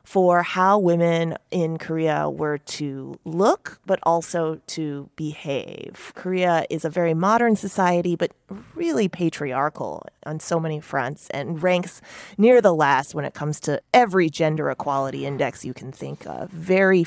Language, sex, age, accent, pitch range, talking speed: English, female, 30-49, American, 150-185 Hz, 150 wpm